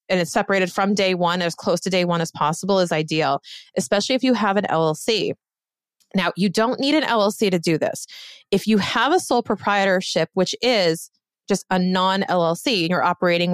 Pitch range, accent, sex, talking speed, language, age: 175-220 Hz, American, female, 195 wpm, English, 30-49